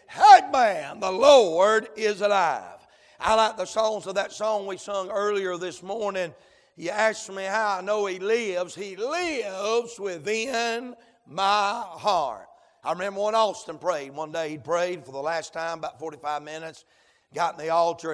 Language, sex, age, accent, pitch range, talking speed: English, male, 60-79, American, 175-215 Hz, 170 wpm